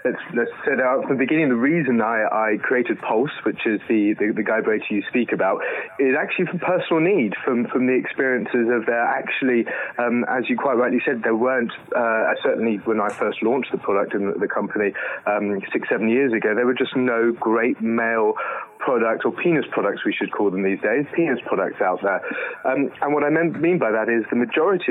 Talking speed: 220 wpm